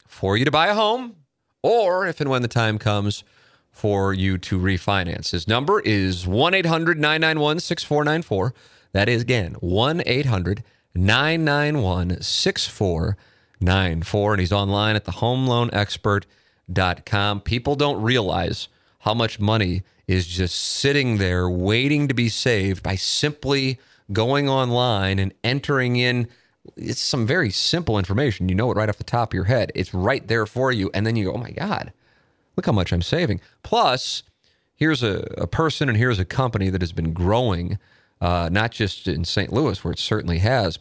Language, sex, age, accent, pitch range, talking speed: English, male, 30-49, American, 95-125 Hz, 155 wpm